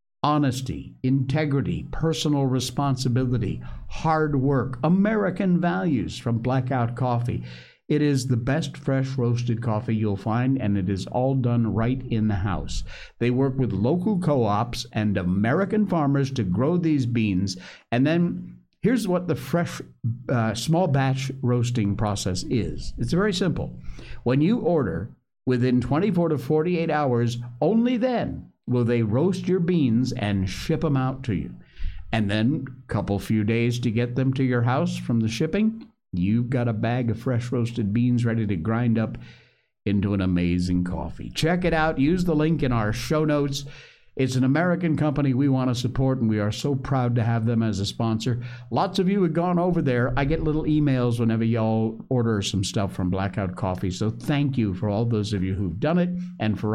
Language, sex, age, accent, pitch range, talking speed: English, male, 60-79, American, 110-150 Hz, 180 wpm